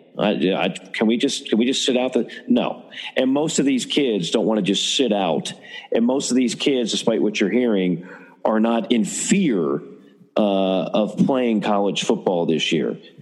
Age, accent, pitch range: 40-59, American, 105-125 Hz